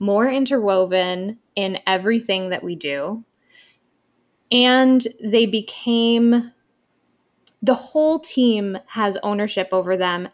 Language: English